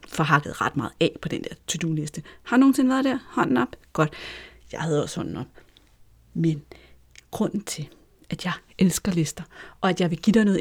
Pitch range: 165-210 Hz